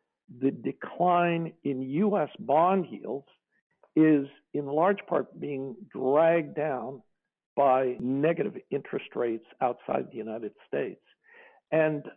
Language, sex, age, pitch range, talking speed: English, male, 60-79, 140-190 Hz, 110 wpm